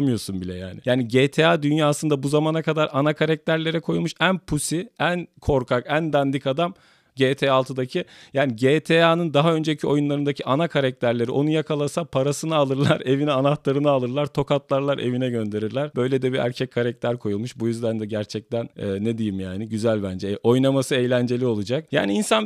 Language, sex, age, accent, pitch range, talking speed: Turkish, male, 40-59, native, 110-145 Hz, 160 wpm